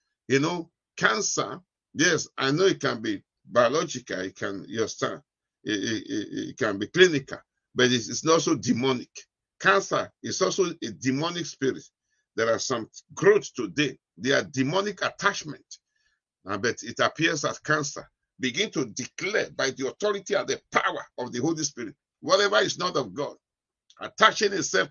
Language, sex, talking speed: English, male, 150 wpm